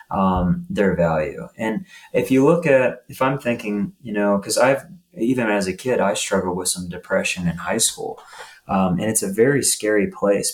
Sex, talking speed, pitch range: male, 195 wpm, 100-140 Hz